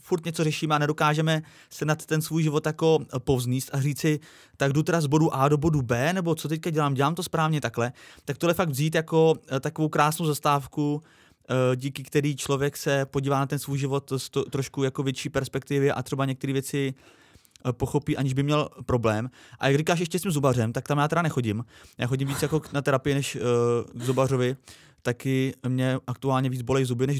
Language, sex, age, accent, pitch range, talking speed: Czech, male, 20-39, native, 130-155 Hz, 200 wpm